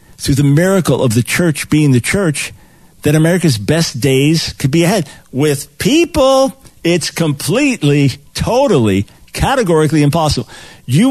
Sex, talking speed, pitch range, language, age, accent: male, 130 wpm, 135-180 Hz, English, 50-69, American